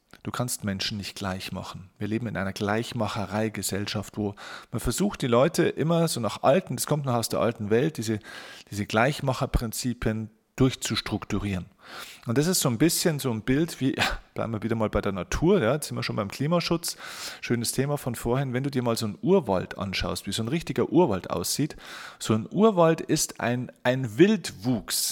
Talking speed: 185 wpm